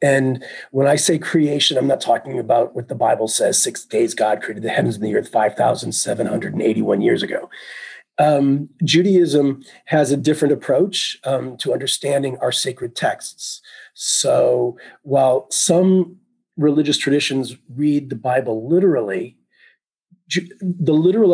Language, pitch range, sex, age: English, 130-175 Hz, male, 40-59